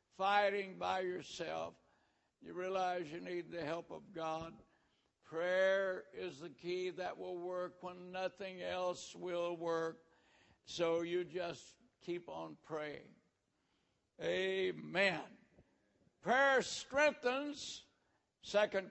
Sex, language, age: male, English, 60-79